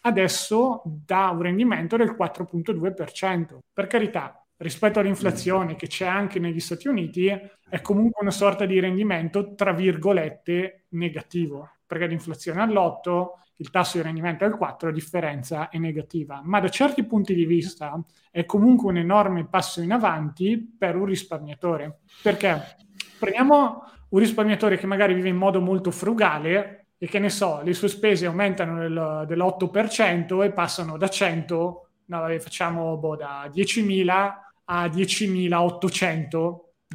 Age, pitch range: 30-49, 170-205 Hz